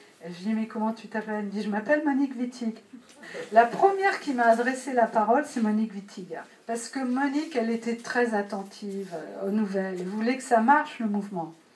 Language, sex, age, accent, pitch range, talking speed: French, female, 50-69, French, 210-255 Hz, 220 wpm